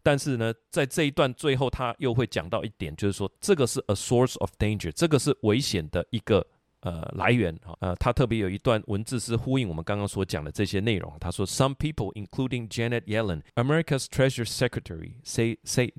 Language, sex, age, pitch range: Chinese, male, 30-49, 100-135 Hz